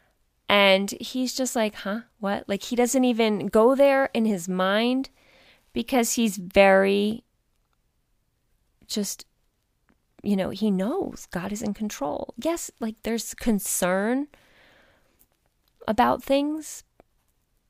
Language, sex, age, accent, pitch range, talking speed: English, female, 20-39, American, 185-235 Hz, 110 wpm